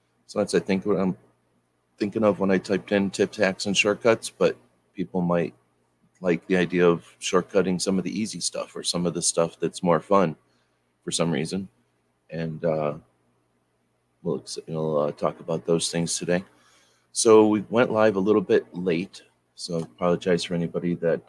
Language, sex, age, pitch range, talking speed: English, male, 30-49, 70-90 Hz, 180 wpm